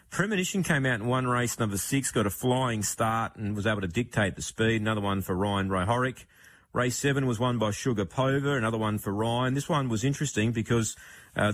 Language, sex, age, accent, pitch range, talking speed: English, male, 30-49, Australian, 100-125 Hz, 215 wpm